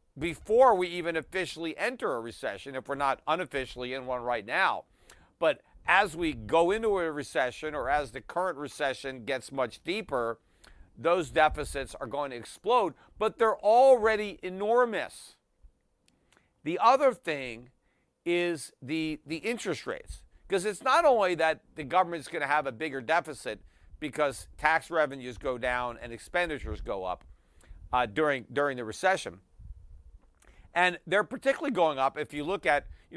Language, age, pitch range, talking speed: English, 50-69, 130-175 Hz, 150 wpm